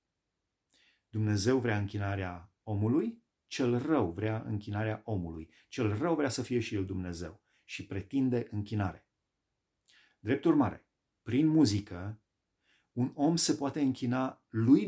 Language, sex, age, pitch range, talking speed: Romanian, male, 30-49, 95-125 Hz, 120 wpm